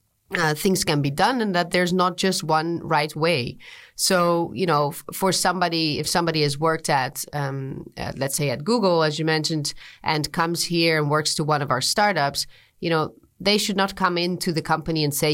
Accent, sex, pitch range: Dutch, female, 150-185 Hz